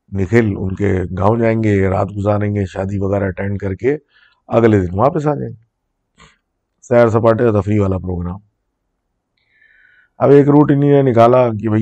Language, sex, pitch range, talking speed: Urdu, male, 95-115 Hz, 155 wpm